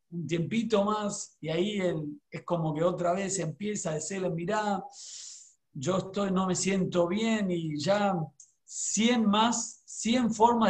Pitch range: 165-200 Hz